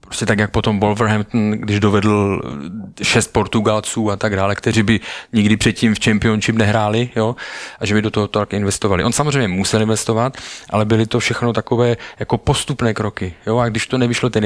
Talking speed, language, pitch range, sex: 185 wpm, Slovak, 105-120 Hz, male